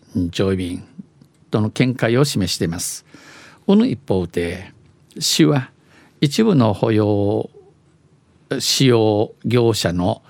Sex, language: male, Japanese